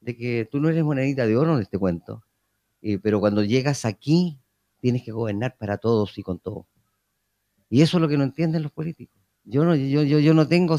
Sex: female